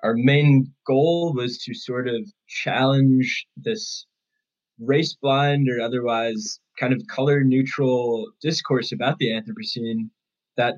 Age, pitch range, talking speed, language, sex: 10-29, 115-145 Hz, 110 wpm, English, male